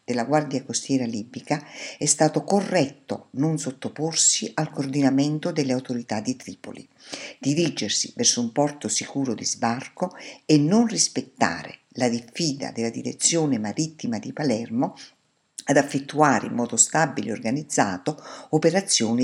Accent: native